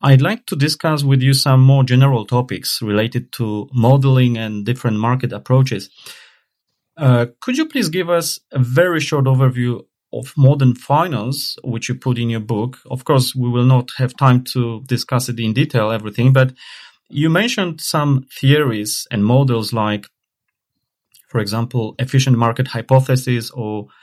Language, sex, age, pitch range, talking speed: Polish, male, 30-49, 115-135 Hz, 155 wpm